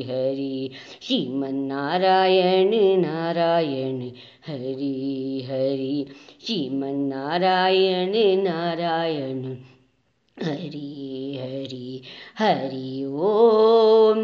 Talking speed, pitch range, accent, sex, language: 65 wpm, 140-185 Hz, native, male, Hindi